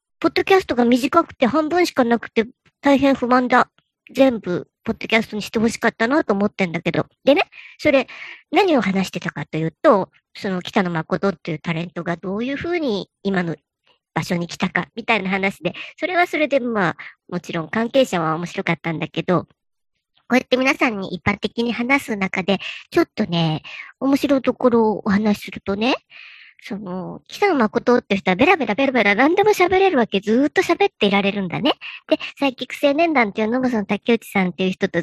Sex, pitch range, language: male, 195-280 Hz, Japanese